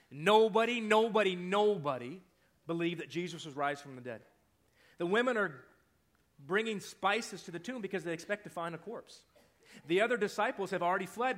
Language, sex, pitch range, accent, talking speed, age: English, male, 160-220 Hz, American, 170 wpm, 30-49